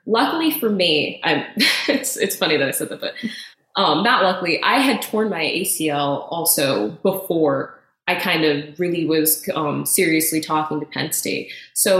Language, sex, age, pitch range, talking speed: English, female, 20-39, 155-185 Hz, 170 wpm